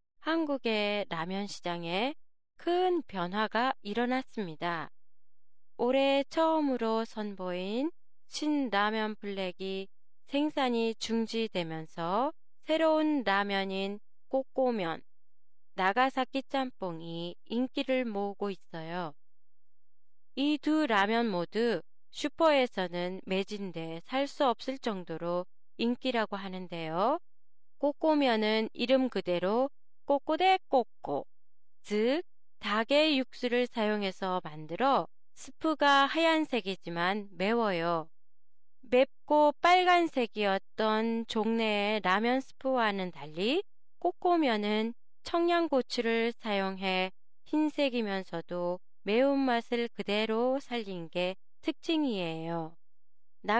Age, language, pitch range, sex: 20-39, Japanese, 195-275 Hz, female